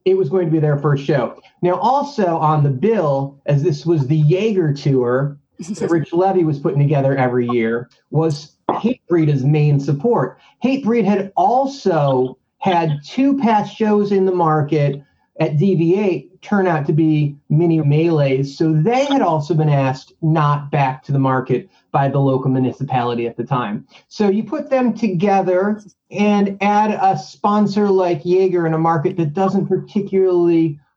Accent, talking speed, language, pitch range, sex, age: American, 165 wpm, English, 145-190 Hz, male, 30-49